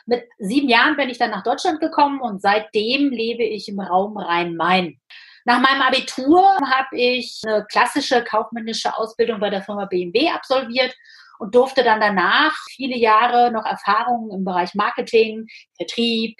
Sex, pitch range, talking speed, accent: female, 205-245 Hz, 155 wpm, German